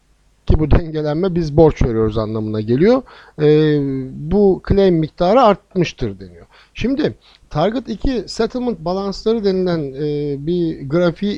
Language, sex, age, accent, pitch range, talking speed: Turkish, male, 60-79, native, 145-190 Hz, 120 wpm